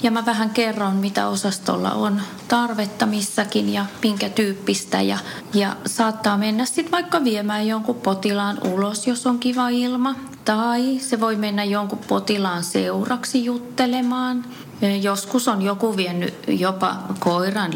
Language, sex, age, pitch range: Finnish, female, 30-49, 200-245 Hz